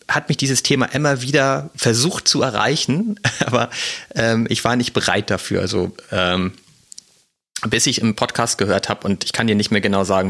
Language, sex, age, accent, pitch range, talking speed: German, male, 30-49, German, 100-115 Hz, 185 wpm